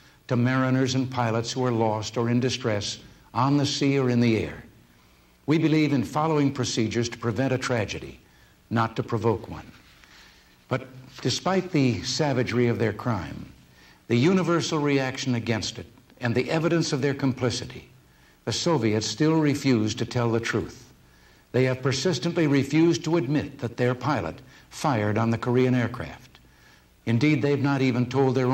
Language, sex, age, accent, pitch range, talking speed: Russian, male, 60-79, American, 115-140 Hz, 160 wpm